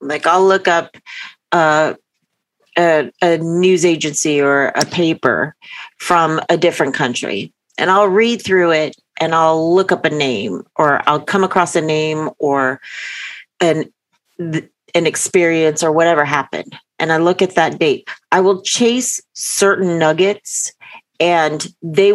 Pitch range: 155-185 Hz